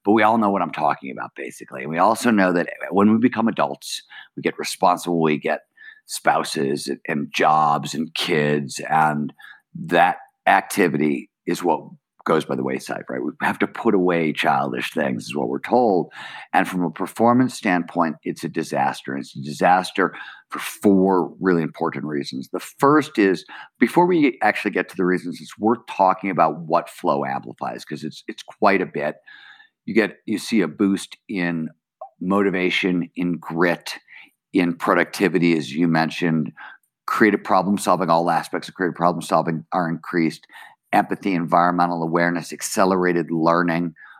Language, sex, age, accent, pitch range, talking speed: English, male, 50-69, American, 80-95 Hz, 155 wpm